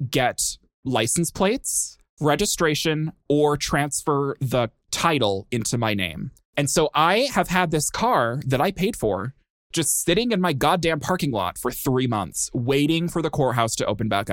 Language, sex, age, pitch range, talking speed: English, male, 20-39, 115-155 Hz, 165 wpm